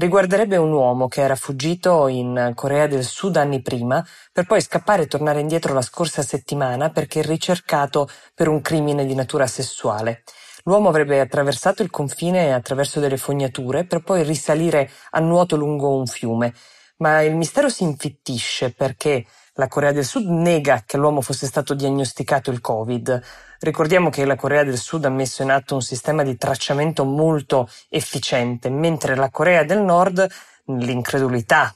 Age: 20-39